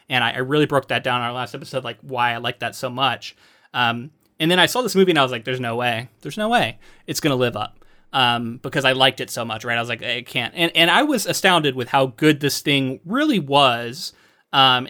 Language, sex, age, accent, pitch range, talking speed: English, male, 20-39, American, 130-160 Hz, 265 wpm